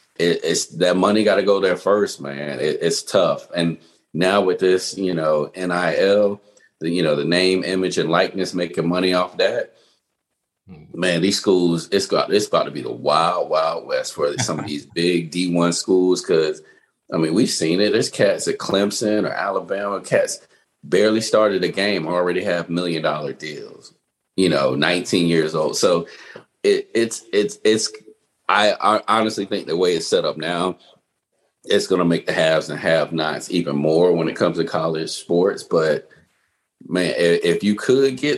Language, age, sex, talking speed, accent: English, 40-59, male, 180 wpm, American